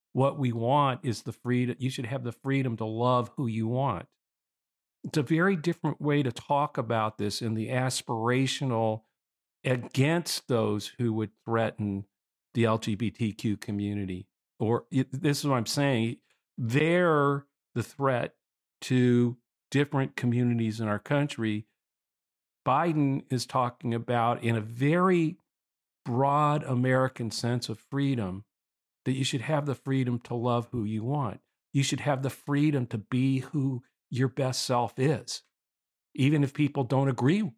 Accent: American